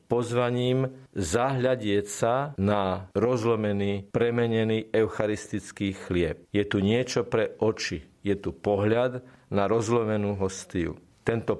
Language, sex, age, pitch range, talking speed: Slovak, male, 50-69, 100-130 Hz, 100 wpm